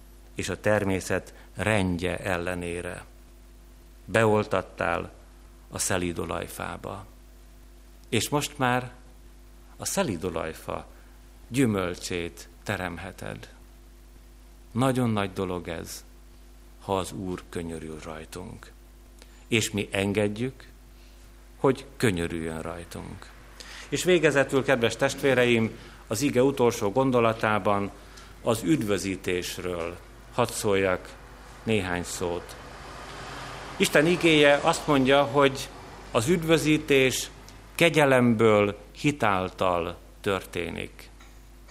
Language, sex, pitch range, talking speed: Hungarian, male, 85-125 Hz, 80 wpm